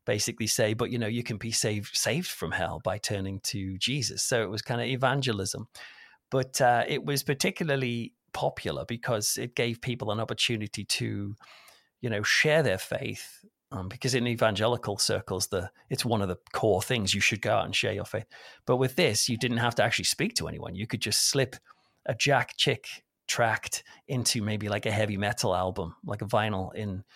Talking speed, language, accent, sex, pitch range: 200 wpm, English, British, male, 105-125 Hz